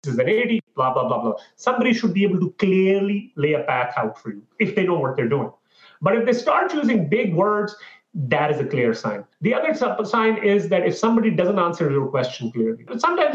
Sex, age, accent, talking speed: male, 30-49, Indian, 225 wpm